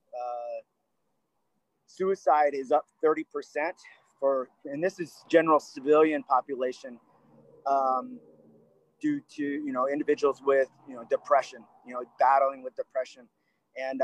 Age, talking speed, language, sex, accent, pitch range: 30-49, 120 wpm, English, male, American, 125-155 Hz